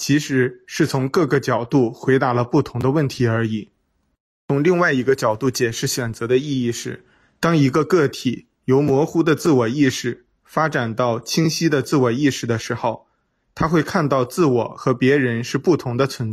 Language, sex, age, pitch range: Chinese, male, 20-39, 120-145 Hz